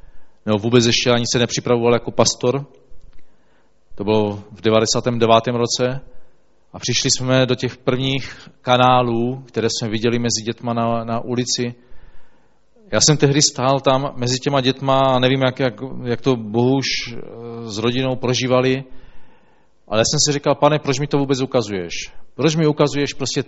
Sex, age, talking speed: male, 40-59, 155 wpm